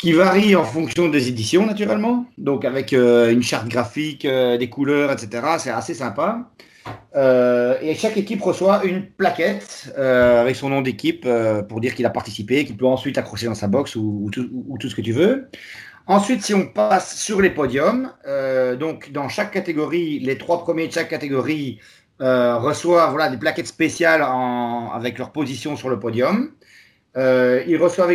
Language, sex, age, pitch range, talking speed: French, male, 40-59, 125-180 Hz, 190 wpm